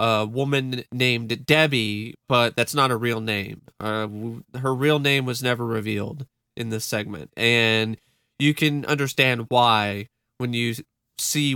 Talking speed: 145 wpm